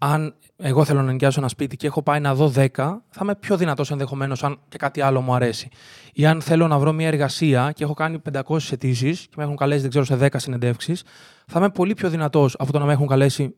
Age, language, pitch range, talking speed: 20-39, Greek, 135-165 Hz, 240 wpm